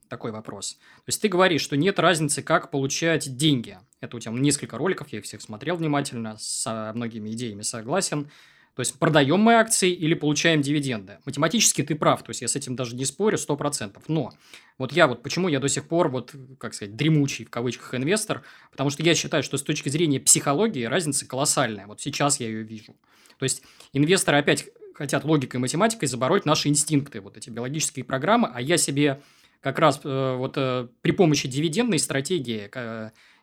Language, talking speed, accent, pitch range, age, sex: Russian, 185 wpm, native, 125-160 Hz, 20-39, male